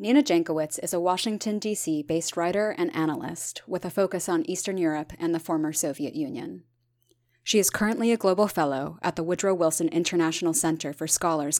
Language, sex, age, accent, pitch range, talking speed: English, female, 20-39, American, 150-185 Hz, 180 wpm